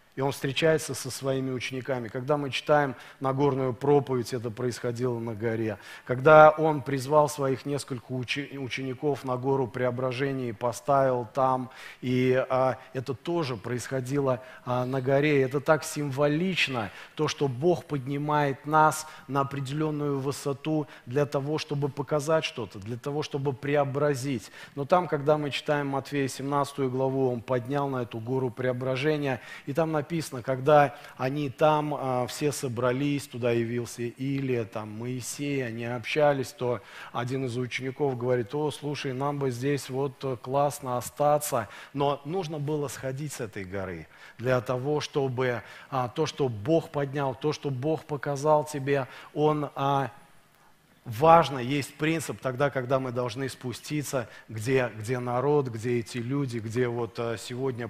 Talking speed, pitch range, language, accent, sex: 140 wpm, 125-145 Hz, Russian, native, male